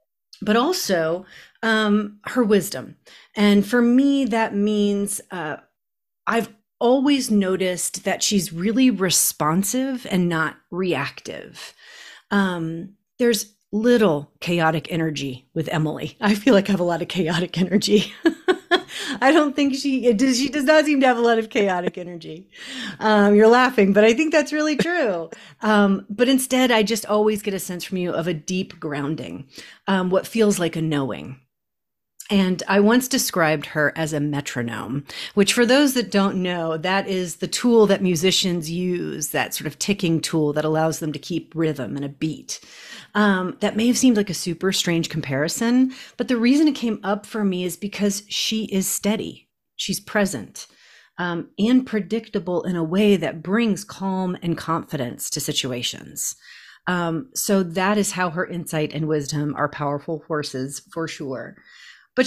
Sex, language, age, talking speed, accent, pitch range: female, English, 40-59, 165 wpm, American, 165-225 Hz